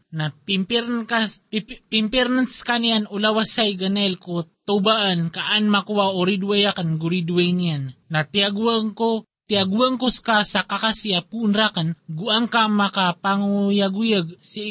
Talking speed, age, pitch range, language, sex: 105 wpm, 20-39, 175-220 Hz, Filipino, male